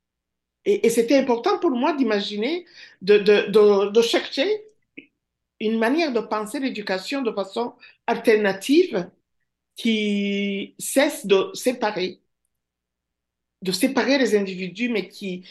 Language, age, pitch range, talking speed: French, 50-69, 180-275 Hz, 110 wpm